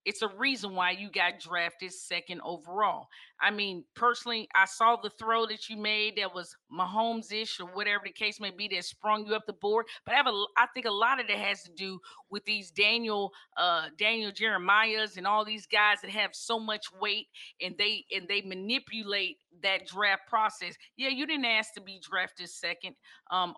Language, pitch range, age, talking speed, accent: English, 185-225 Hz, 40-59, 190 wpm, American